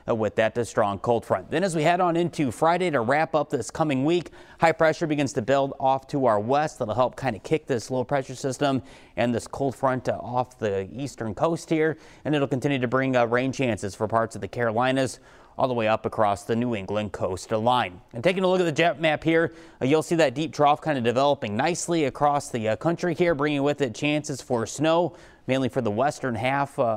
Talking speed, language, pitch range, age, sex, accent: 240 wpm, English, 115-150 Hz, 30-49, male, American